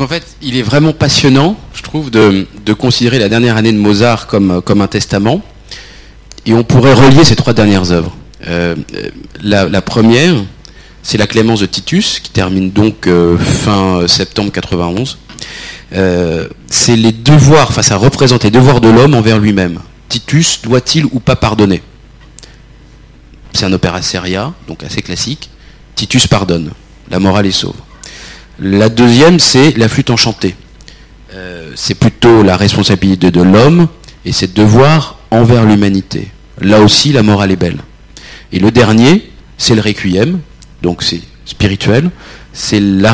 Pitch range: 95-130 Hz